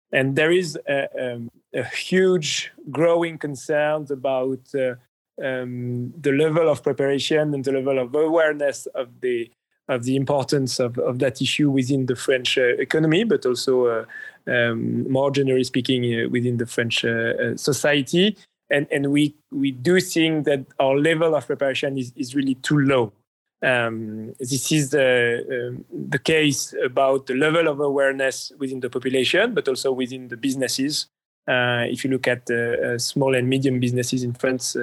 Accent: French